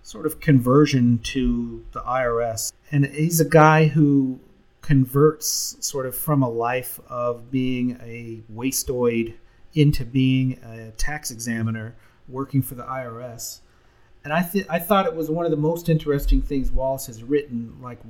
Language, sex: English, male